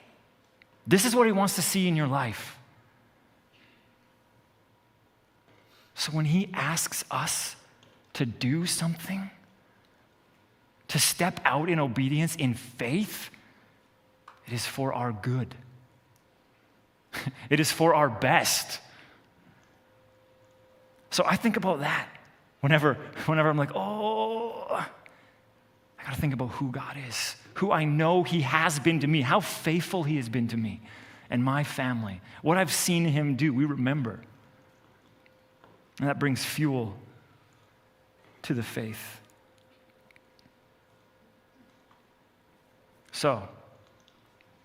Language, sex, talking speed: English, male, 115 wpm